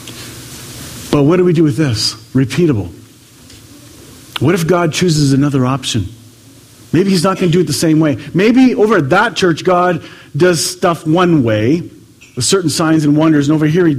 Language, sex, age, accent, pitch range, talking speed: English, male, 40-59, American, 125-180 Hz, 185 wpm